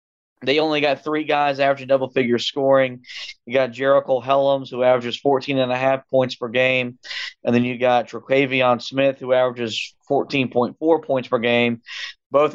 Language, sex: English, male